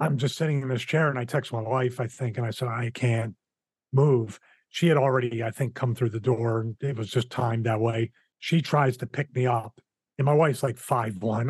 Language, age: English, 40-59